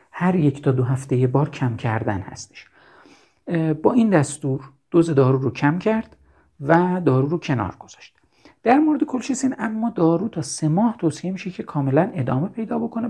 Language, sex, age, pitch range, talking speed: Persian, male, 50-69, 120-165 Hz, 170 wpm